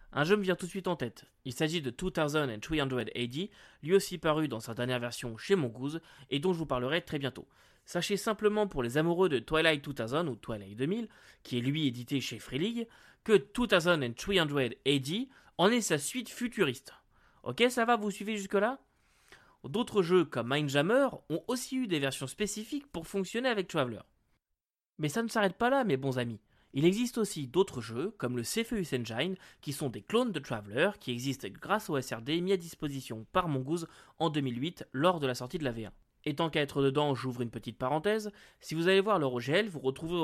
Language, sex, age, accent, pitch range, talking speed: French, male, 20-39, French, 130-190 Hz, 205 wpm